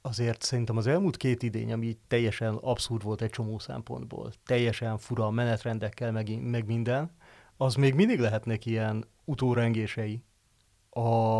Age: 30-49